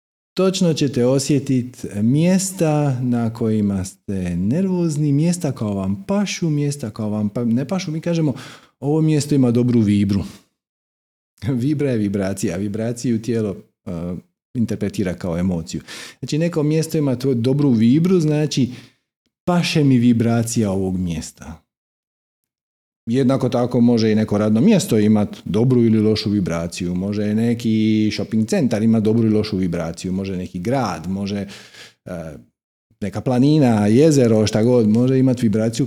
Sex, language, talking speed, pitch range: male, Croatian, 135 wpm, 105-150 Hz